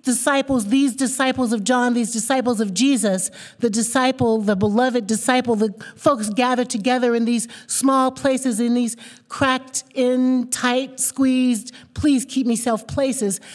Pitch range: 190-260 Hz